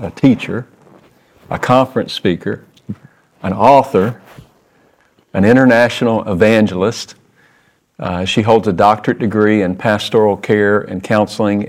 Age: 40-59